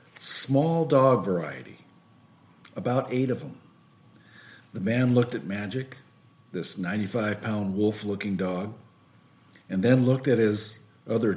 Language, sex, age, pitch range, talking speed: English, male, 50-69, 105-145 Hz, 115 wpm